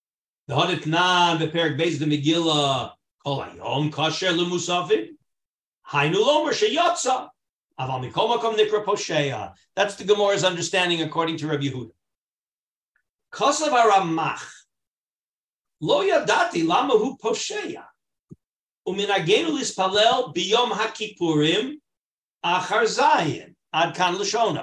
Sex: male